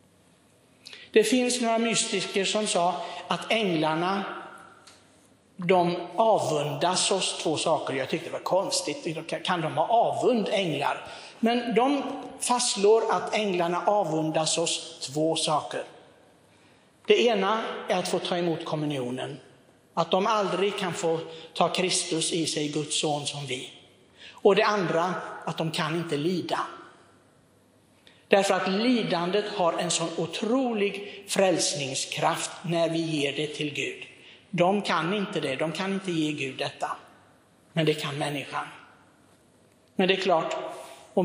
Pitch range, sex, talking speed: 155-200 Hz, male, 135 wpm